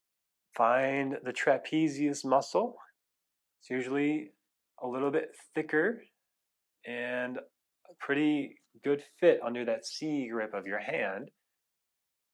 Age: 20-39